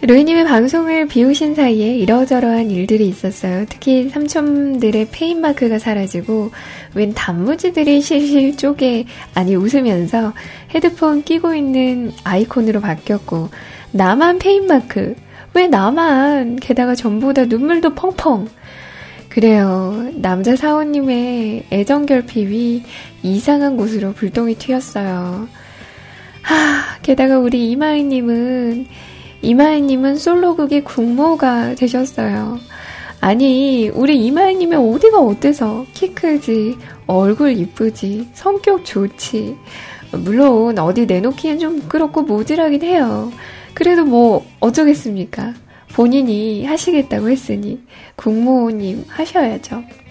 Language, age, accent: Korean, 10-29, native